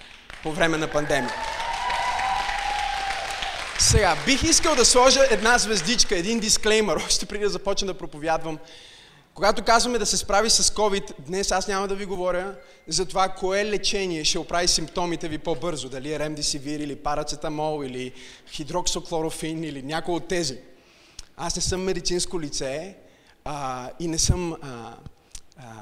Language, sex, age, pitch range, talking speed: Bulgarian, male, 20-39, 155-205 Hz, 145 wpm